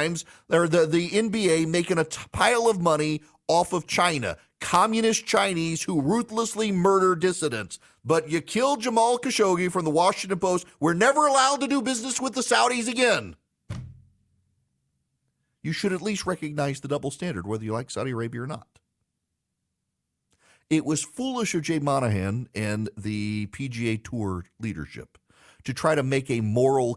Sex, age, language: male, 40-59, English